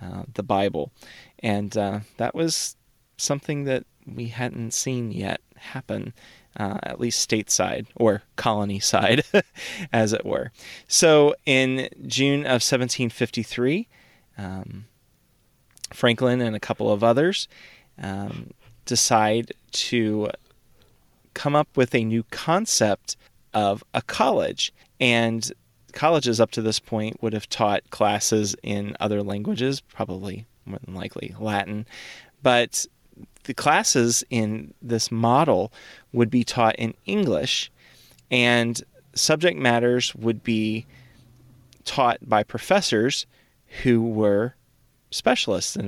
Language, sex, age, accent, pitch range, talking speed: English, male, 30-49, American, 105-125 Hz, 115 wpm